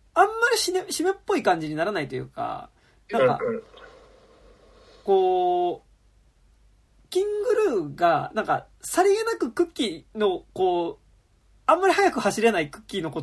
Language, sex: Japanese, male